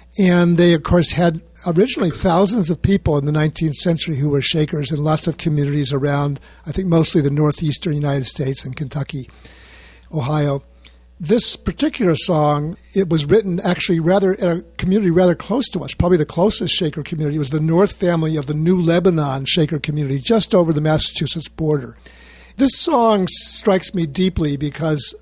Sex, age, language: male, 60-79, English